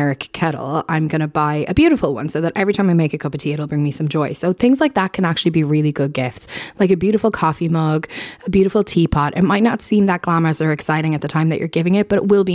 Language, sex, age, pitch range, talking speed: English, female, 20-39, 155-195 Hz, 280 wpm